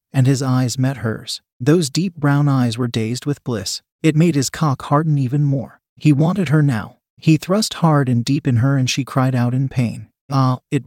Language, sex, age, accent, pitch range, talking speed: English, male, 30-49, American, 125-155 Hz, 215 wpm